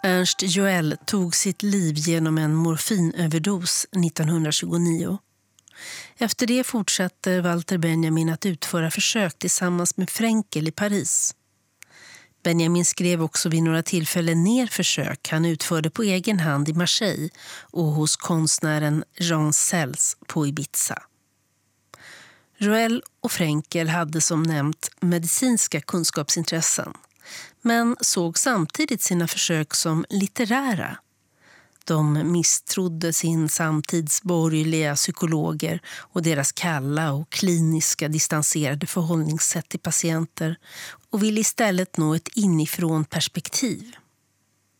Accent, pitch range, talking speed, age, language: native, 160-195 Hz, 105 wpm, 40-59, Swedish